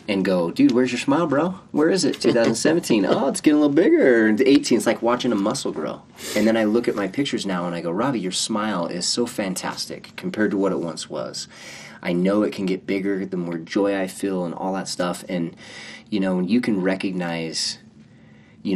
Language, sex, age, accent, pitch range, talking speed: English, male, 30-49, American, 90-105 Hz, 225 wpm